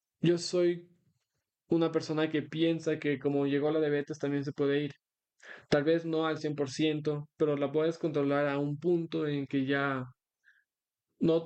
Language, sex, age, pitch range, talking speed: Spanish, male, 20-39, 140-165 Hz, 160 wpm